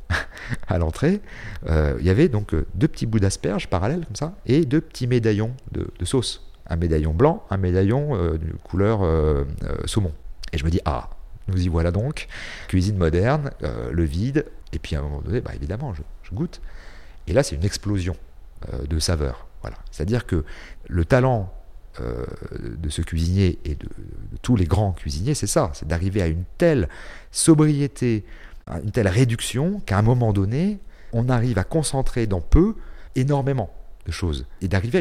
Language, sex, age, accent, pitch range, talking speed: French, male, 40-59, French, 80-120 Hz, 185 wpm